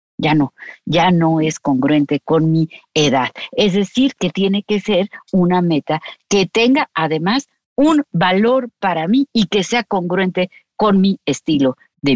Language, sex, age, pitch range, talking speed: Spanish, female, 40-59, 185-260 Hz, 160 wpm